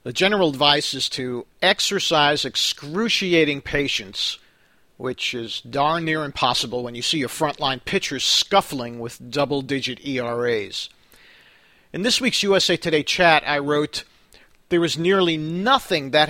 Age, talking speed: 50-69, 135 wpm